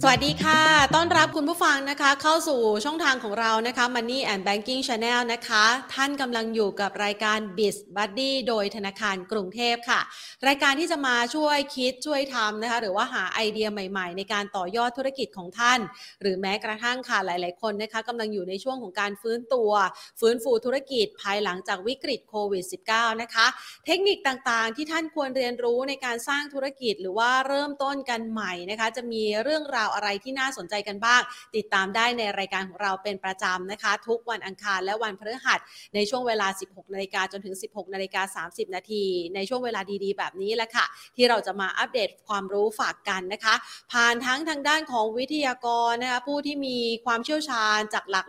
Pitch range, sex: 205-260 Hz, female